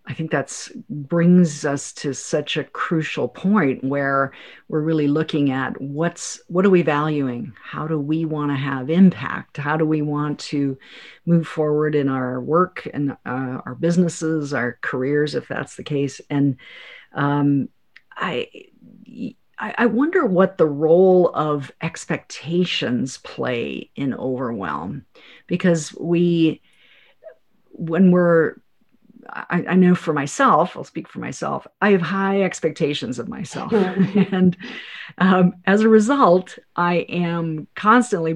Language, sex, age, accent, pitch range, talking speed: English, female, 50-69, American, 145-180 Hz, 135 wpm